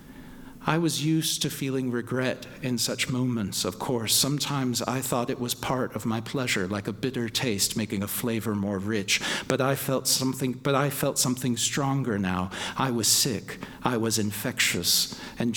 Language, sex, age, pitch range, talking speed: English, male, 50-69, 105-130 Hz, 175 wpm